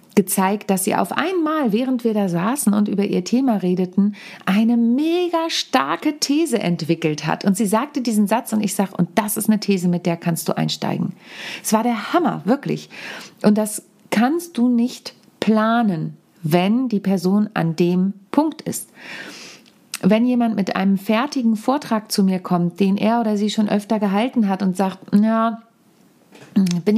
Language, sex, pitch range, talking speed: German, female, 190-230 Hz, 175 wpm